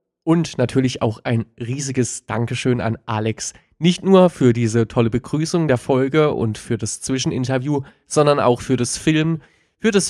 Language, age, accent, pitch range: German, 20-39, German, 115-140 Hz